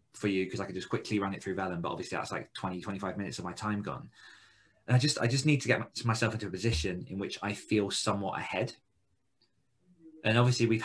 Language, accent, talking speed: English, British, 245 wpm